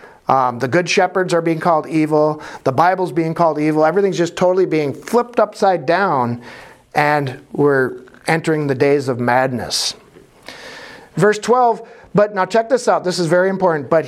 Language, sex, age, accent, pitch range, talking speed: English, male, 50-69, American, 145-205 Hz, 165 wpm